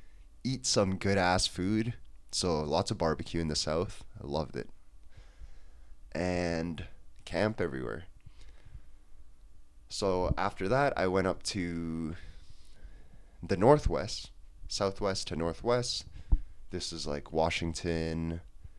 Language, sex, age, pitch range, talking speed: English, male, 20-39, 75-100 Hz, 110 wpm